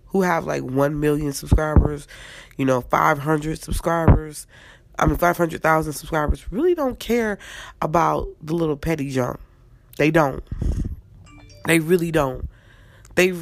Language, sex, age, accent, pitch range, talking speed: English, female, 20-39, American, 125-185 Hz, 140 wpm